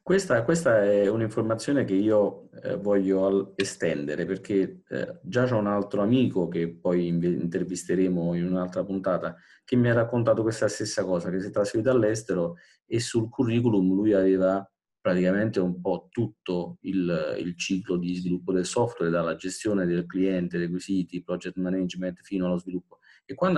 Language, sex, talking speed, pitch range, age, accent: Italian, male, 155 wpm, 90-115 Hz, 30-49, native